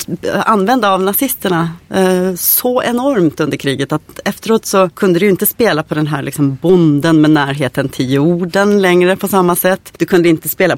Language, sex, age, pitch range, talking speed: English, female, 30-49, 165-205 Hz, 175 wpm